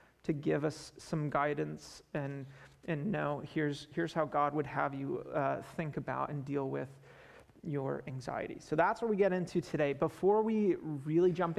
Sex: male